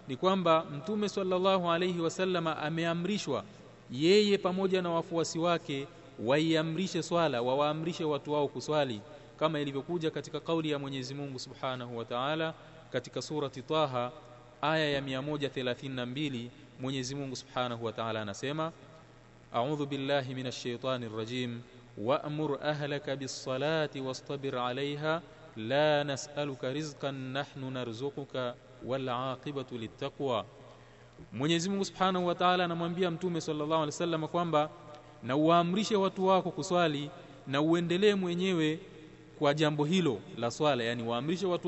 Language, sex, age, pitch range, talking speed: Swahili, male, 30-49, 130-165 Hz, 125 wpm